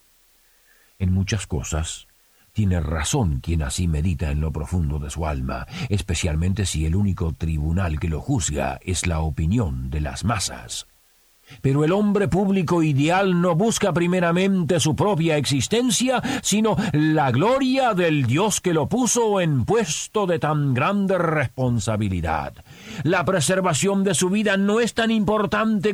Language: Spanish